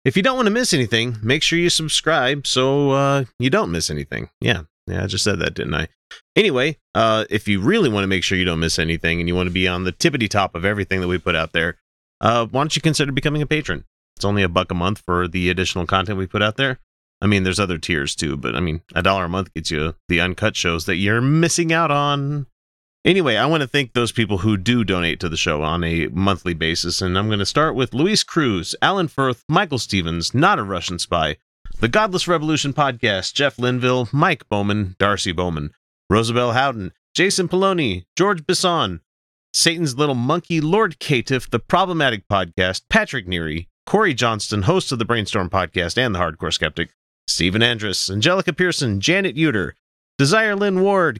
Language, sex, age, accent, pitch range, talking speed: English, male, 30-49, American, 90-145 Hz, 210 wpm